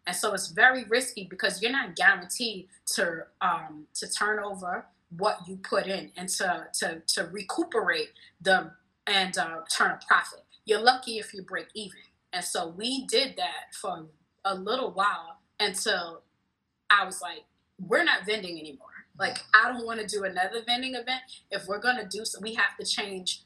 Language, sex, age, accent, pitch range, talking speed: English, female, 20-39, American, 185-225 Hz, 175 wpm